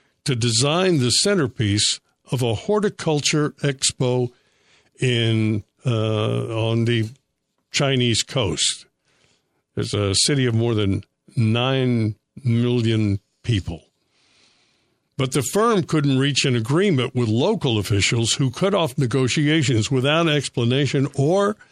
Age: 60-79